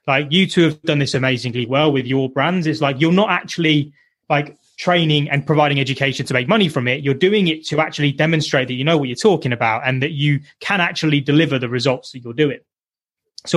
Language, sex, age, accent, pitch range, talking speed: English, male, 20-39, British, 130-165 Hz, 225 wpm